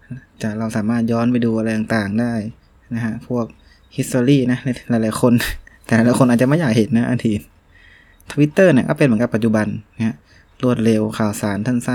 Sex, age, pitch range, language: male, 20-39, 105-120 Hz, Thai